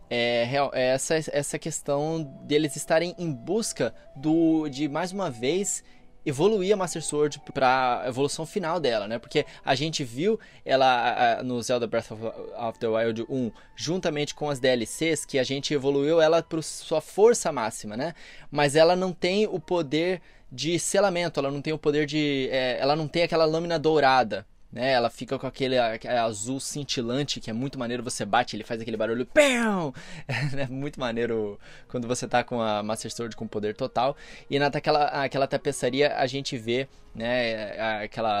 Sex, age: male, 20-39